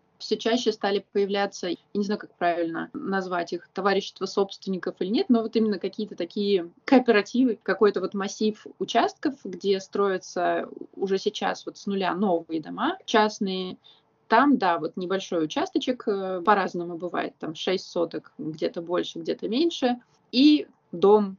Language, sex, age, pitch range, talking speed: Russian, female, 20-39, 180-225 Hz, 140 wpm